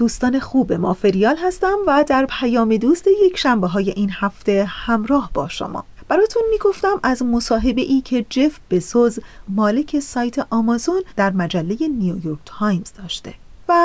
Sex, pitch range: female, 205-290 Hz